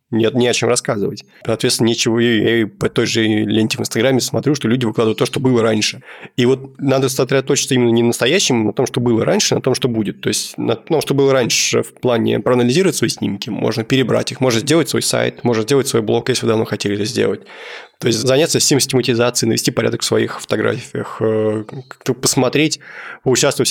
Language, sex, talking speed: Russian, male, 210 wpm